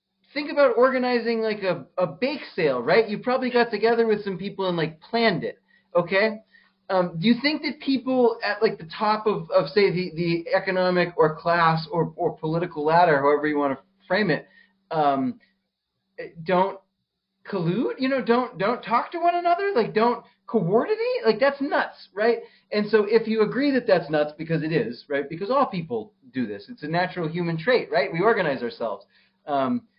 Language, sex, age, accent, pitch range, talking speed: English, male, 30-49, American, 170-225 Hz, 190 wpm